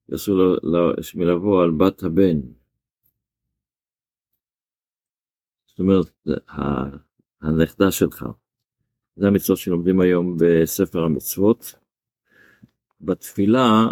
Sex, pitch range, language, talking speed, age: male, 85-105 Hz, Hebrew, 70 wpm, 50-69